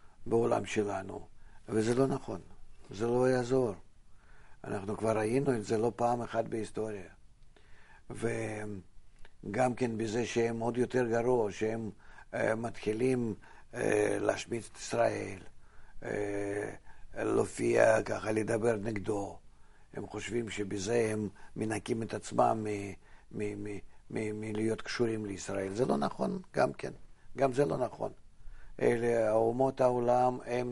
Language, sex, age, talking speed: Hebrew, male, 50-69, 125 wpm